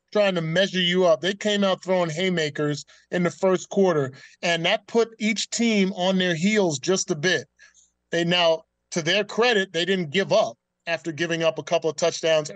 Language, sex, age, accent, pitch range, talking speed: English, male, 30-49, American, 160-195 Hz, 195 wpm